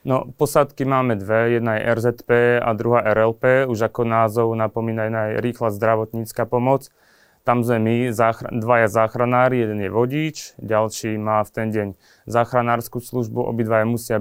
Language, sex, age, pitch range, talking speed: Slovak, male, 20-39, 110-125 Hz, 150 wpm